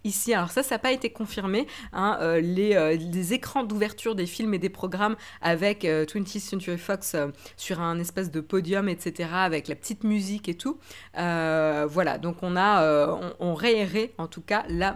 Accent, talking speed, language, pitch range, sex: French, 205 wpm, French, 165-215 Hz, female